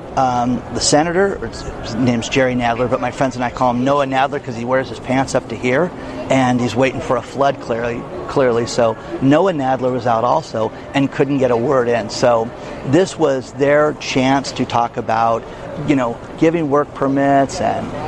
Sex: male